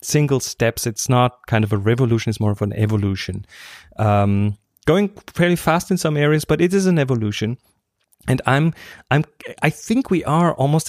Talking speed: 180 wpm